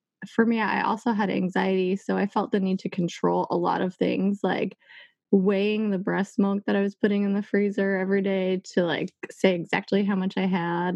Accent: American